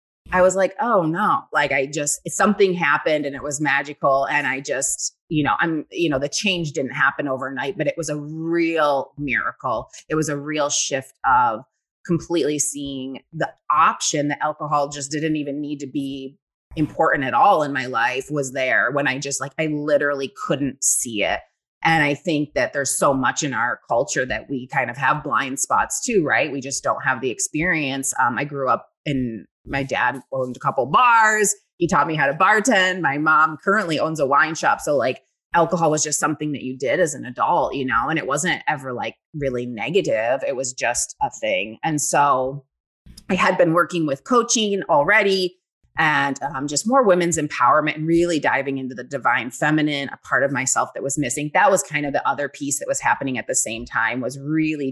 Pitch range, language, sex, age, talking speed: 140-170 Hz, English, female, 30-49, 205 wpm